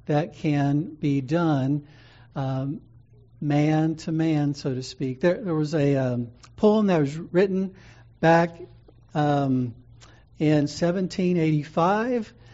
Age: 60-79